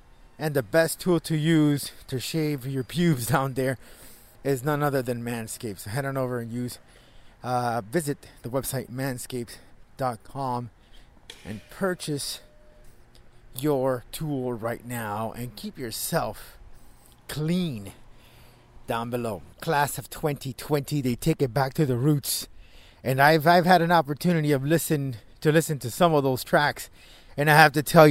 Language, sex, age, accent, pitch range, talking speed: English, male, 30-49, American, 120-155 Hz, 150 wpm